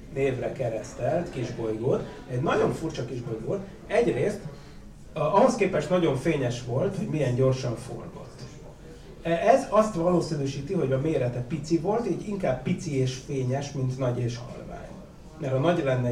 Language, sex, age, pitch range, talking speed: Hungarian, male, 30-49, 130-165 Hz, 145 wpm